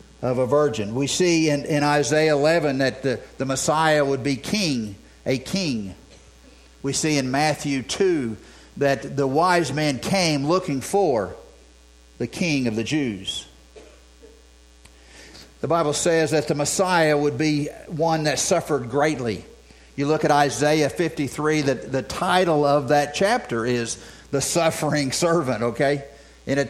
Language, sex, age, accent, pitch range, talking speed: English, male, 50-69, American, 120-155 Hz, 150 wpm